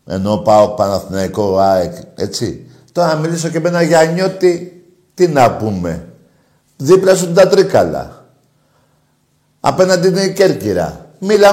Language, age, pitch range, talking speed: Greek, 50-69, 120-165 Hz, 125 wpm